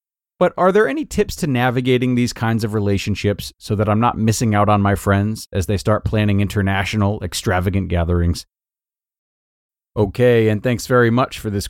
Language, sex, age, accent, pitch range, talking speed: English, male, 40-59, American, 100-130 Hz, 175 wpm